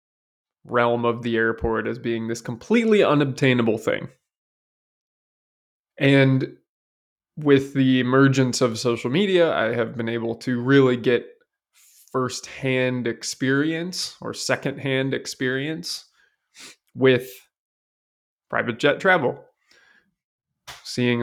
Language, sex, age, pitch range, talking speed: English, male, 20-39, 115-140 Hz, 95 wpm